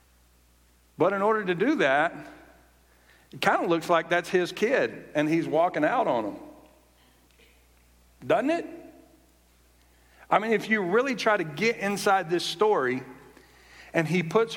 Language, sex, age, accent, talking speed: English, male, 50-69, American, 150 wpm